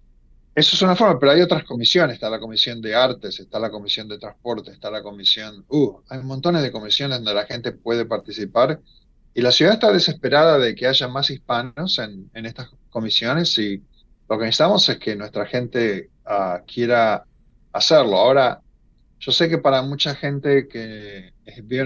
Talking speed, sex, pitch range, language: 175 wpm, male, 110-135 Hz, Spanish